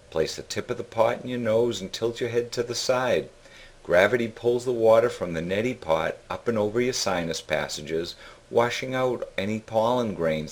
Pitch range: 100-125 Hz